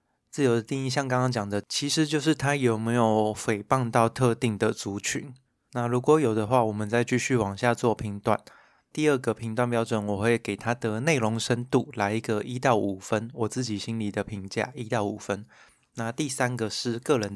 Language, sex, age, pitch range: Chinese, male, 20-39, 105-130 Hz